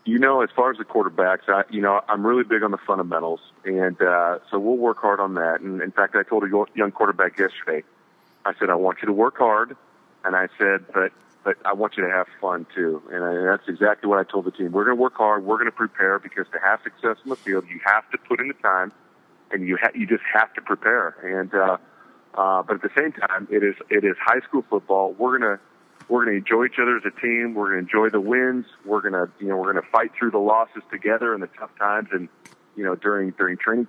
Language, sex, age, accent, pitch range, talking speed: English, male, 40-59, American, 95-115 Hz, 265 wpm